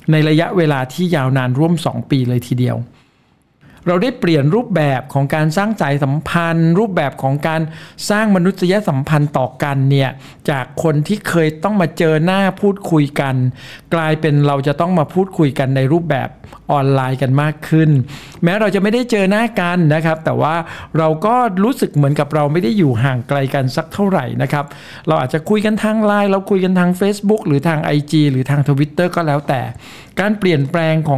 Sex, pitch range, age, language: male, 140-175 Hz, 60-79, Thai